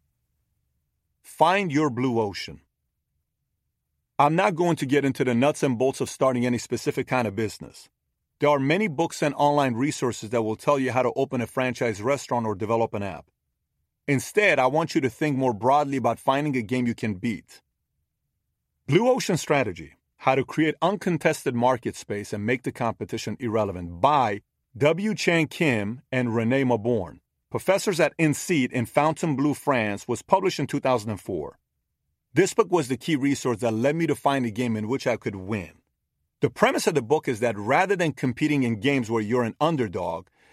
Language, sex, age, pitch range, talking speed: Arabic, male, 40-59, 115-145 Hz, 180 wpm